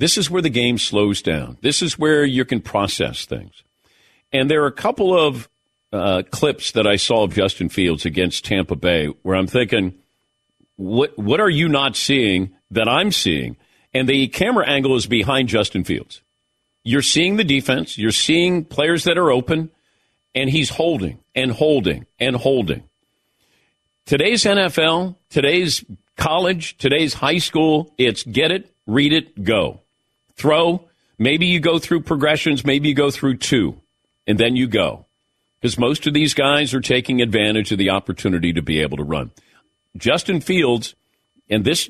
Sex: male